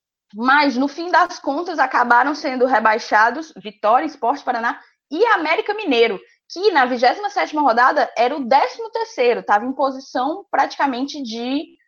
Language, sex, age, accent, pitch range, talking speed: Portuguese, female, 20-39, Brazilian, 205-285 Hz, 130 wpm